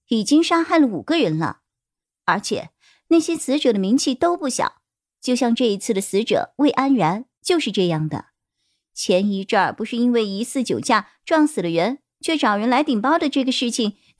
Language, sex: Chinese, male